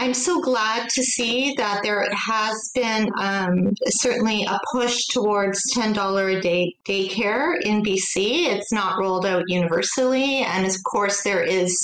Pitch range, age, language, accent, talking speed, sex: 195-250 Hz, 40-59, English, American, 150 wpm, female